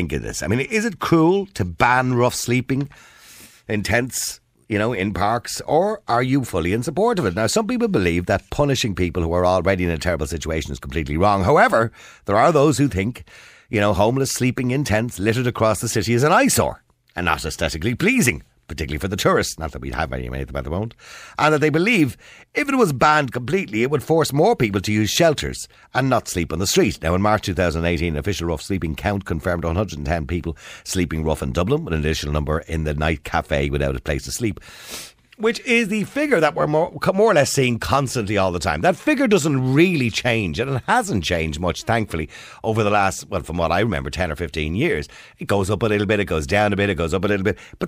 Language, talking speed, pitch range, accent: English, 235 wpm, 85-120 Hz, Irish